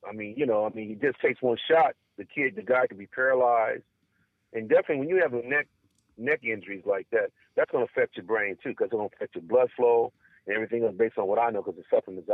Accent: American